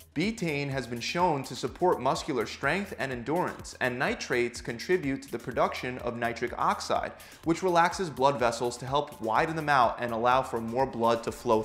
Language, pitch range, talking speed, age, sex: English, 115-150 Hz, 180 wpm, 20-39, male